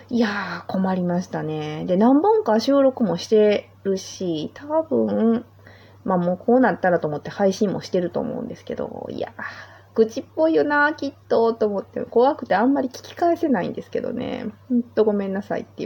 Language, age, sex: Japanese, 30-49, female